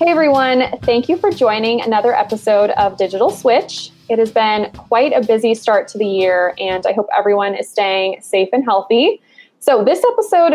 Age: 20-39